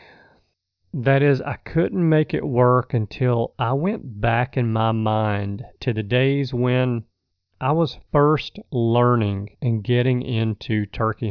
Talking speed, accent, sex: 140 wpm, American, male